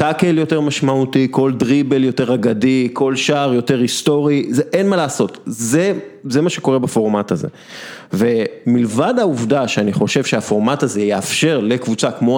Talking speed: 145 wpm